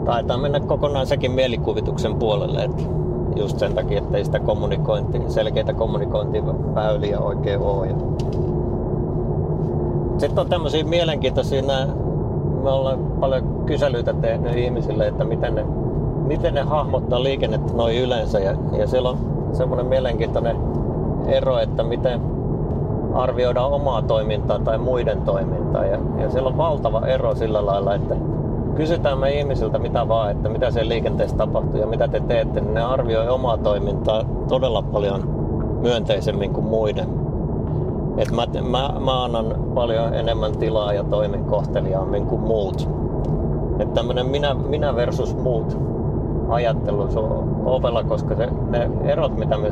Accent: native